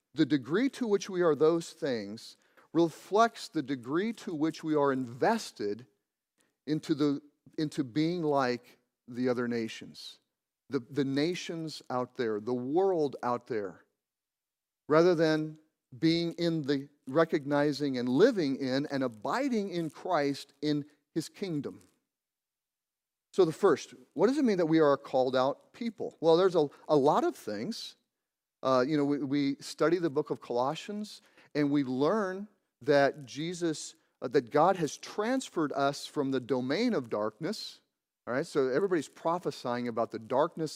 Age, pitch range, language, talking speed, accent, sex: 40-59, 135-180 Hz, English, 155 wpm, American, male